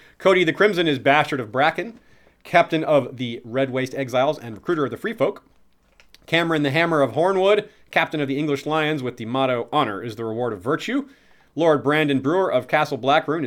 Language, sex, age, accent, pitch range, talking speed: English, male, 40-59, American, 115-150 Hz, 195 wpm